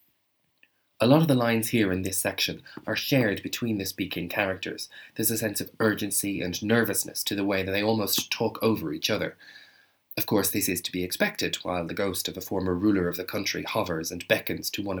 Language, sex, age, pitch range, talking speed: English, male, 20-39, 95-115 Hz, 215 wpm